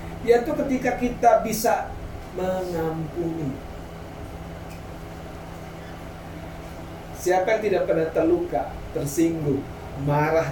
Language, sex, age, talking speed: Indonesian, male, 40-59, 70 wpm